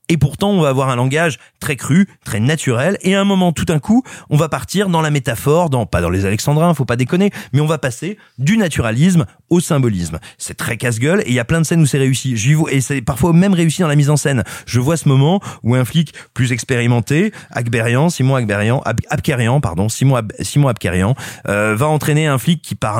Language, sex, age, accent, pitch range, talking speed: French, male, 30-49, French, 120-160 Hz, 230 wpm